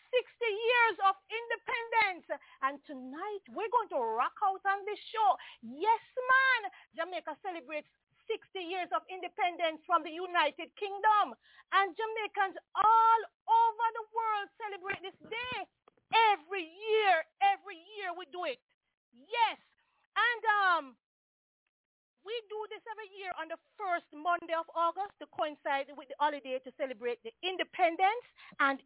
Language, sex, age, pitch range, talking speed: English, female, 40-59, 310-420 Hz, 135 wpm